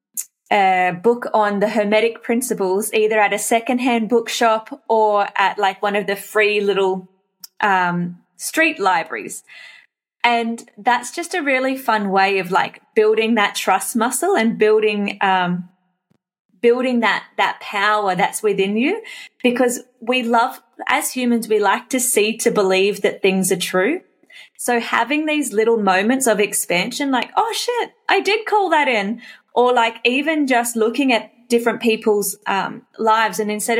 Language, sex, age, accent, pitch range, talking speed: English, female, 20-39, Australian, 200-245 Hz, 155 wpm